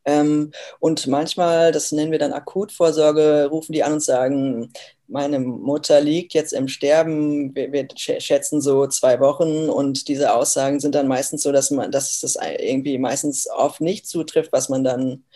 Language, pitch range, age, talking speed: German, 140-155 Hz, 20-39, 165 wpm